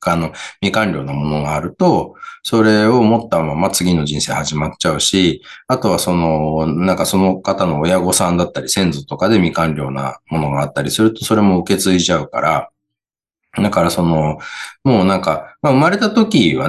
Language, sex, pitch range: Japanese, male, 75-95 Hz